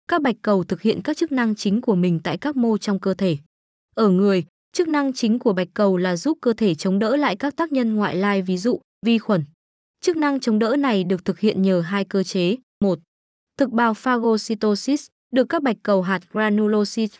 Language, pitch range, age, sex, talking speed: Vietnamese, 190-235 Hz, 20-39, female, 220 wpm